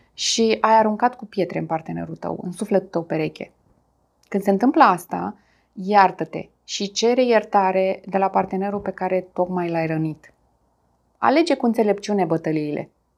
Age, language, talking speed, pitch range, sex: 20-39, Romanian, 145 wpm, 170-210 Hz, female